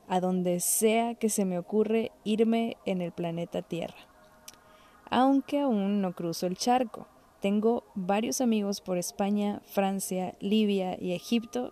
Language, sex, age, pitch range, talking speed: Spanish, female, 20-39, 185-220 Hz, 140 wpm